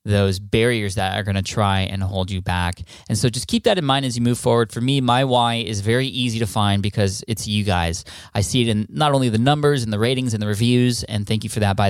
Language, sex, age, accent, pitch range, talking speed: English, male, 20-39, American, 100-120 Hz, 270 wpm